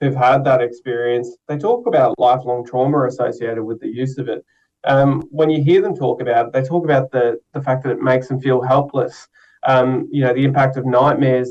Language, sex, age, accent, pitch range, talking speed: English, male, 20-39, Australian, 125-155 Hz, 220 wpm